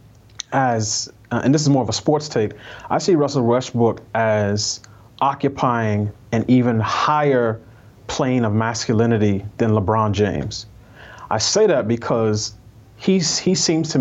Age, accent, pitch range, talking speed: 30-49, American, 110-130 Hz, 135 wpm